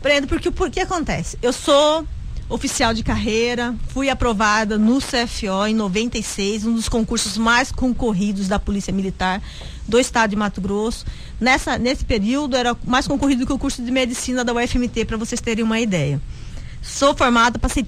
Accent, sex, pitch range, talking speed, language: Brazilian, female, 225-270 Hz, 165 wpm, Portuguese